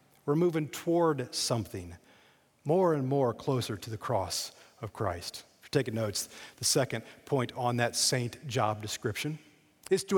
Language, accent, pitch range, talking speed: English, American, 115-150 Hz, 160 wpm